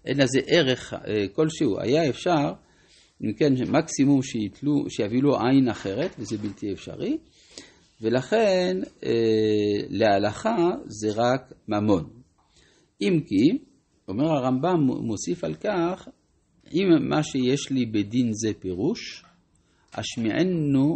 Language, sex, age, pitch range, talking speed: Hebrew, male, 50-69, 110-155 Hz, 105 wpm